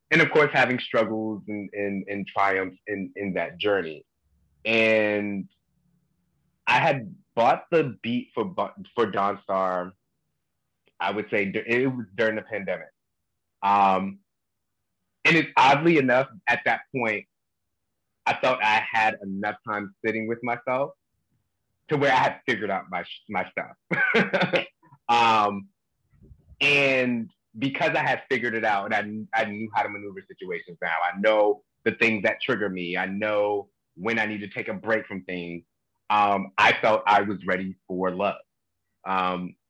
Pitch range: 95-120 Hz